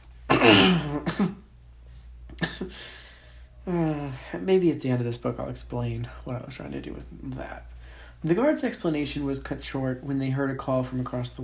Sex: male